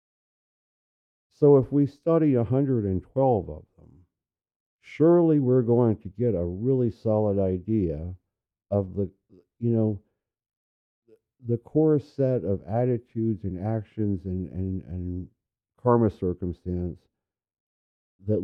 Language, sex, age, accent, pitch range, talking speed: English, male, 50-69, American, 90-120 Hz, 105 wpm